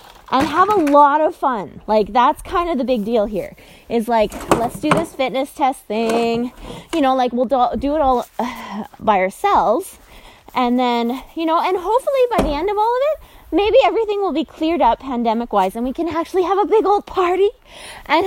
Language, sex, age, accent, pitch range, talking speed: English, female, 20-39, American, 245-355 Hz, 205 wpm